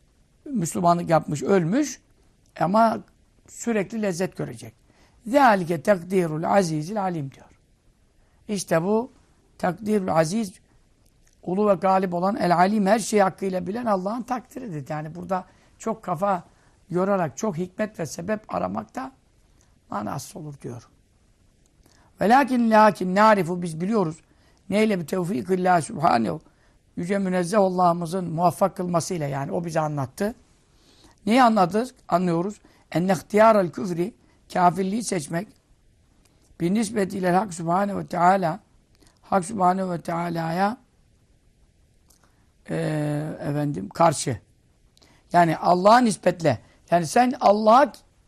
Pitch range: 170-215 Hz